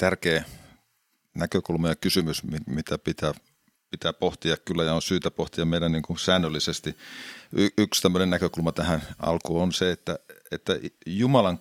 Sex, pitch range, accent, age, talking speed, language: male, 80-90 Hz, native, 50-69, 140 wpm, Finnish